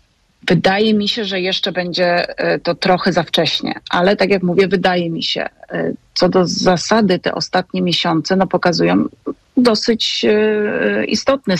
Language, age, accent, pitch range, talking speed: Polish, 30-49, native, 160-185 Hz, 140 wpm